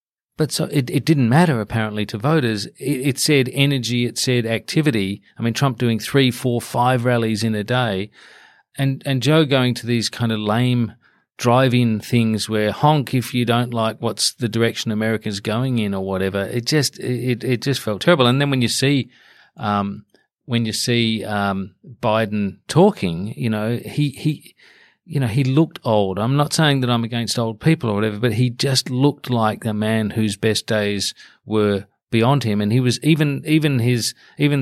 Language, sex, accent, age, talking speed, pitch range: English, male, Australian, 40-59, 190 wpm, 110-135 Hz